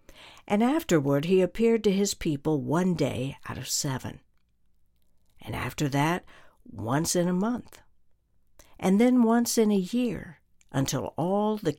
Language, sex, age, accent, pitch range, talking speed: English, female, 60-79, American, 135-200 Hz, 145 wpm